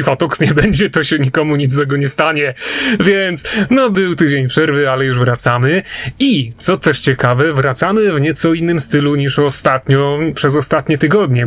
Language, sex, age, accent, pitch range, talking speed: Polish, male, 30-49, native, 140-190 Hz, 165 wpm